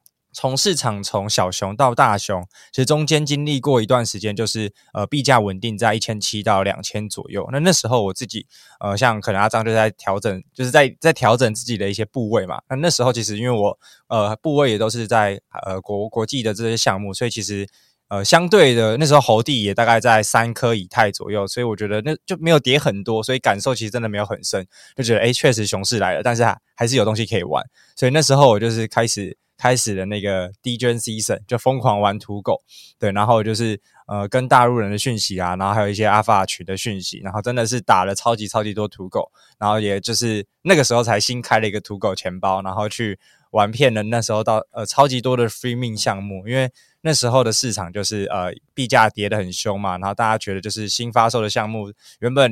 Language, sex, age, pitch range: Chinese, male, 20-39, 105-125 Hz